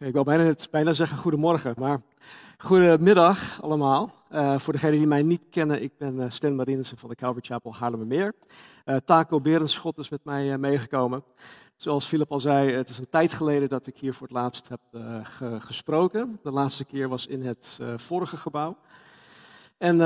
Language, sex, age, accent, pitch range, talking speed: Dutch, male, 50-69, Dutch, 125-155 Hz, 185 wpm